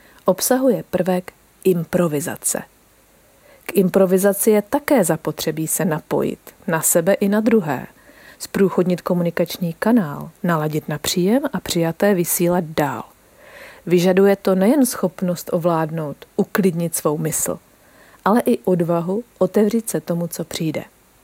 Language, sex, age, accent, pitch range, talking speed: Czech, female, 40-59, native, 170-205 Hz, 115 wpm